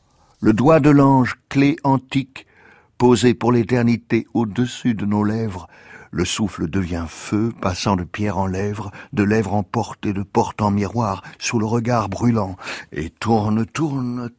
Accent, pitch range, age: French, 105-125 Hz, 60-79